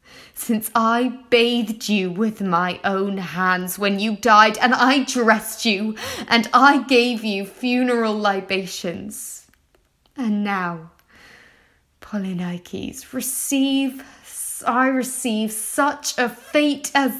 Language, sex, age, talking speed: English, female, 20-39, 105 wpm